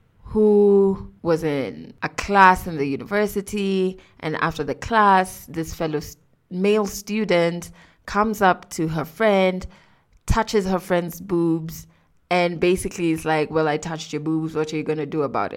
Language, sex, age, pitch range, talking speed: English, female, 20-39, 155-205 Hz, 160 wpm